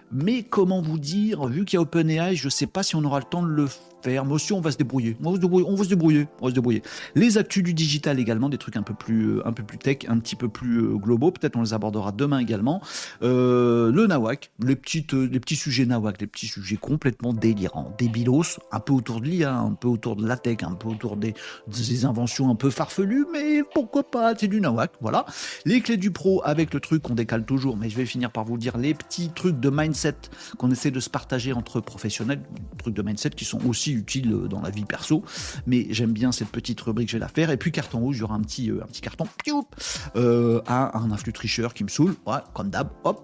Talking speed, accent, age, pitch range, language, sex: 240 wpm, French, 50-69, 120-170 Hz, French, male